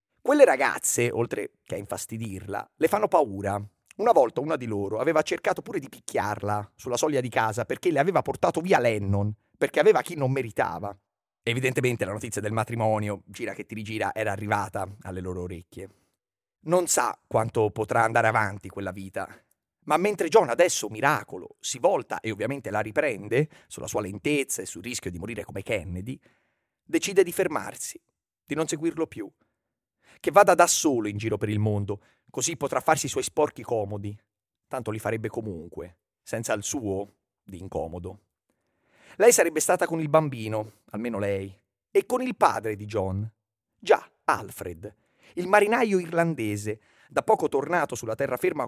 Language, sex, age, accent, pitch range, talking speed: Italian, male, 30-49, native, 105-150 Hz, 165 wpm